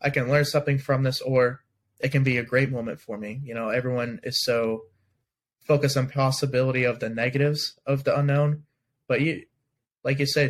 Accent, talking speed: American, 195 wpm